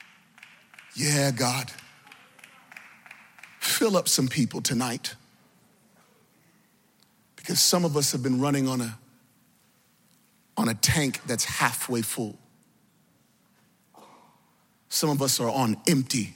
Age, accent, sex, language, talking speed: 40-59, American, male, English, 105 wpm